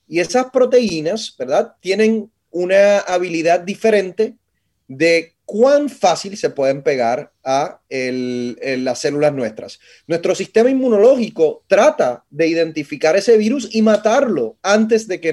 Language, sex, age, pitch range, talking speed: Spanish, male, 30-49, 165-240 Hz, 130 wpm